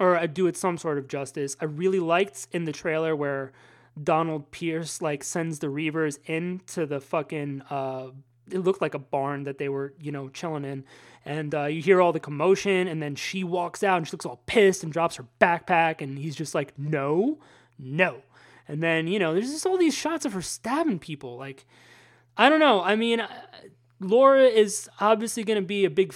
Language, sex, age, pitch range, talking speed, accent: English, male, 20-39, 150-210 Hz, 205 wpm, American